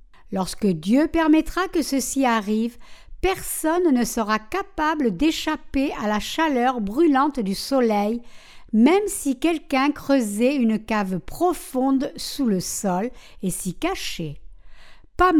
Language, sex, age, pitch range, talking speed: French, female, 60-79, 225-320 Hz, 120 wpm